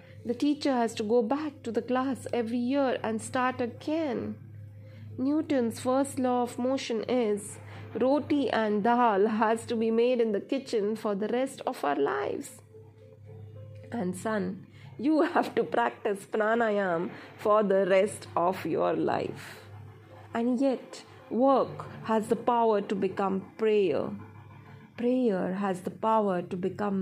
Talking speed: 140 wpm